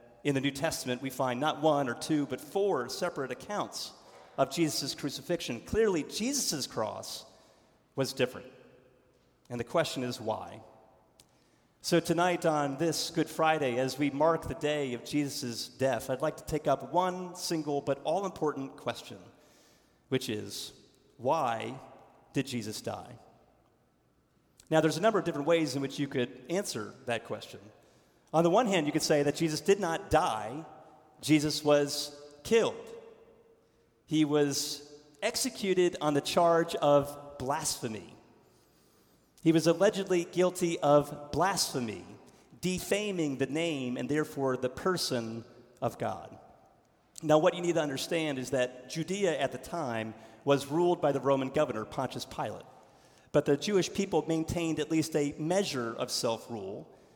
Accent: American